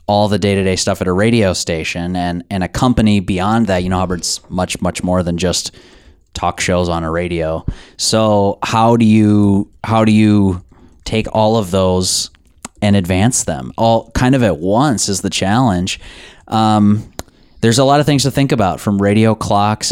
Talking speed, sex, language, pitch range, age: 185 wpm, male, English, 95-115 Hz, 20-39